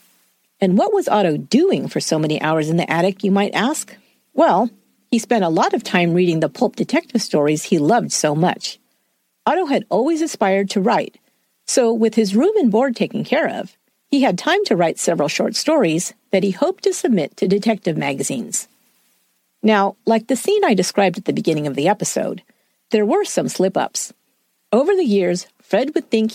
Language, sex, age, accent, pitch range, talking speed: English, female, 50-69, American, 175-260 Hz, 190 wpm